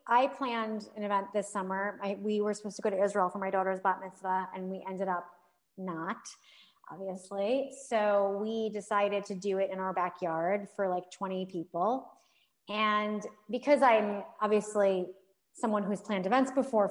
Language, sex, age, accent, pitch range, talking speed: English, female, 30-49, American, 195-250 Hz, 165 wpm